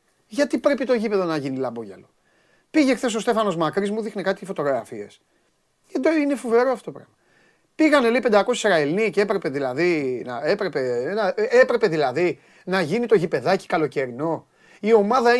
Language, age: Greek, 30-49